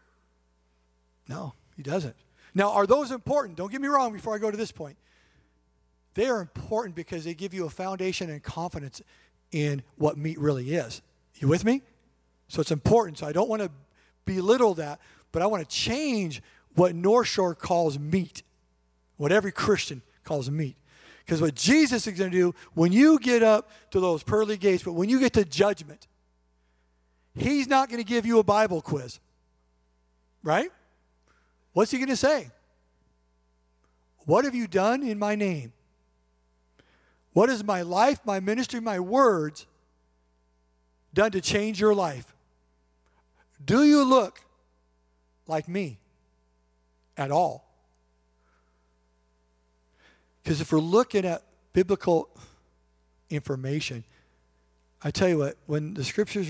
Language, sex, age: English, male, 50-69